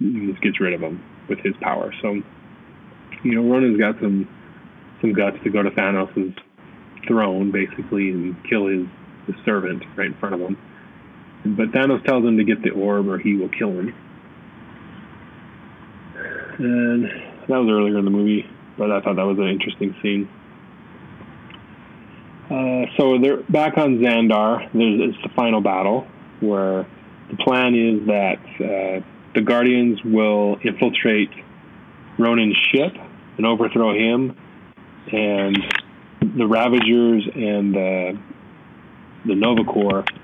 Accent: American